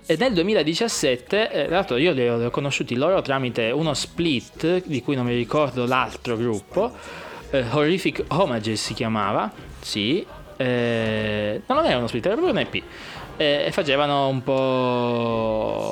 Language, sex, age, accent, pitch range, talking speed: Italian, male, 20-39, native, 115-145 Hz, 160 wpm